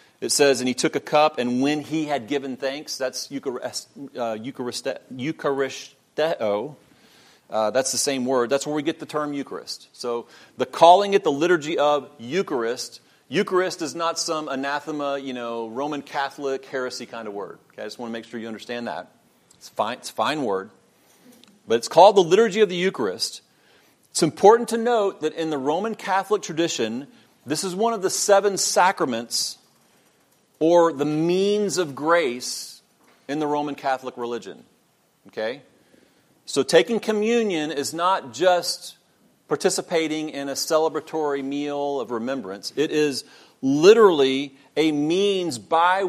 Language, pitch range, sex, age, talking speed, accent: English, 135-175 Hz, male, 40-59, 155 wpm, American